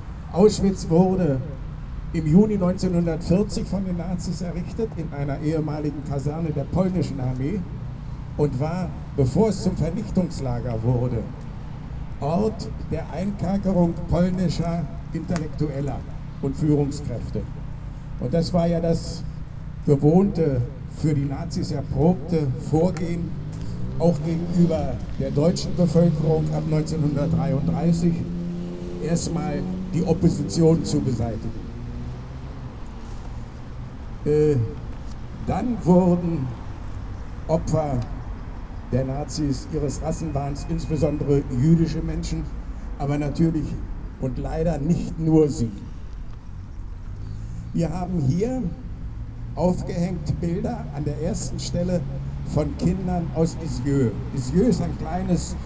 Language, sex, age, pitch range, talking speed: German, male, 60-79, 125-170 Hz, 95 wpm